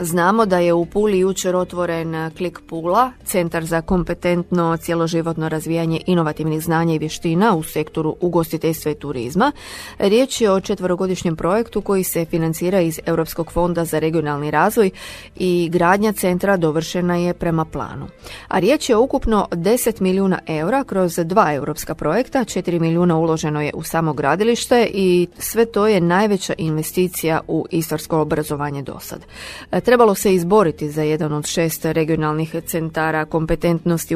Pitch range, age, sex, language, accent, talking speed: 165-200 Hz, 30-49, female, Croatian, native, 150 wpm